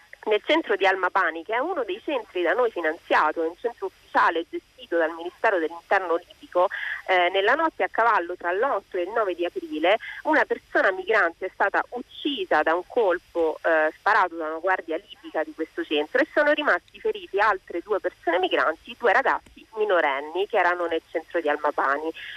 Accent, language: native, Italian